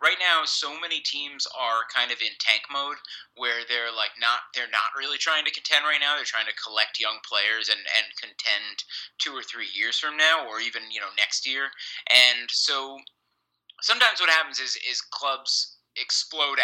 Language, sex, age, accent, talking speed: English, male, 30-49, American, 190 wpm